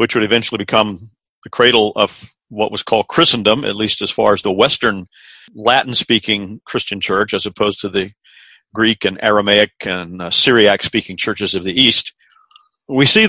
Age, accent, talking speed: 50-69, American, 165 wpm